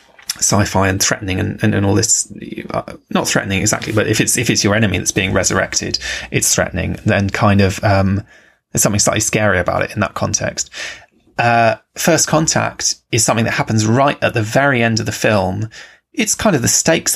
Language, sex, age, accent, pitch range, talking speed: English, male, 20-39, British, 105-135 Hz, 200 wpm